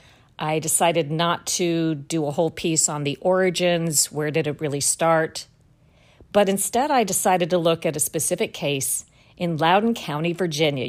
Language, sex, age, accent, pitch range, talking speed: English, female, 50-69, American, 145-175 Hz, 165 wpm